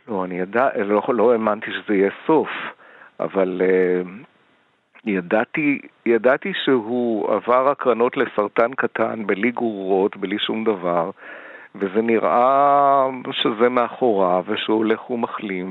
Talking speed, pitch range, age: 120 wpm, 105-135 Hz, 50-69